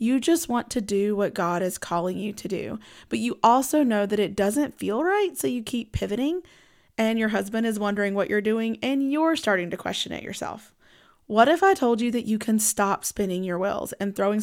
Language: English